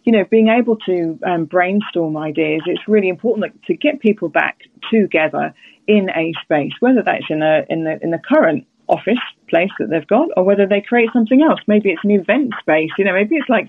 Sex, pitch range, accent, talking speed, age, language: female, 175-230 Hz, British, 215 wpm, 30-49, English